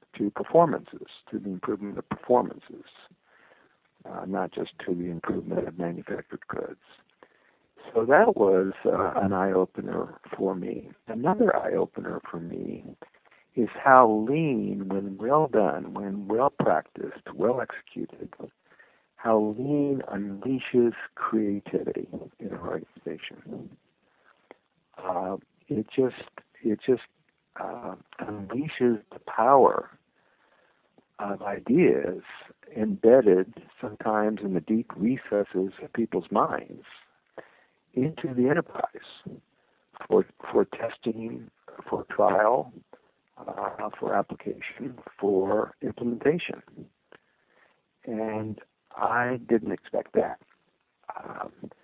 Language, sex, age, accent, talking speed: English, male, 60-79, American, 100 wpm